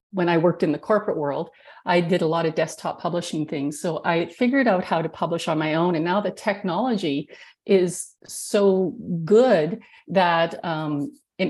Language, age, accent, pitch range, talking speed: English, 40-59, American, 160-195 Hz, 185 wpm